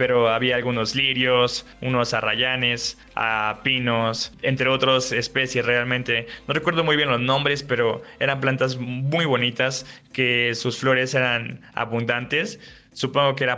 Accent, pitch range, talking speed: Mexican, 115-130 Hz, 135 wpm